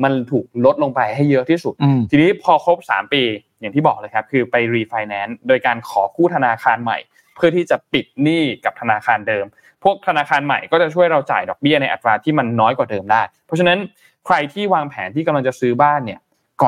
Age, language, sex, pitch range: 20-39, Thai, male, 125-165 Hz